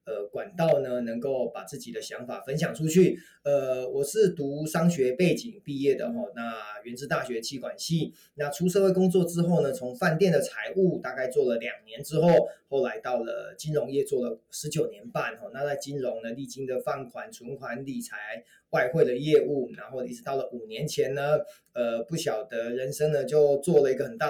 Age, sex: 20-39, male